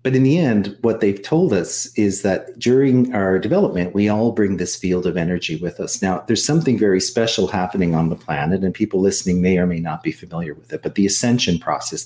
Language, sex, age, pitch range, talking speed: English, male, 50-69, 95-120 Hz, 230 wpm